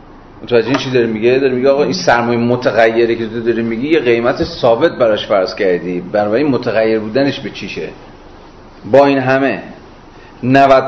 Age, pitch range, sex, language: 40-59, 115-145 Hz, male, Persian